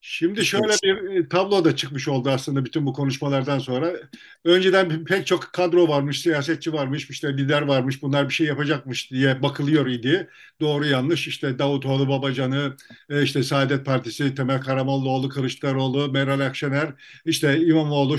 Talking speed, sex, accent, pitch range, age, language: 145 wpm, male, native, 145-185 Hz, 50-69, Turkish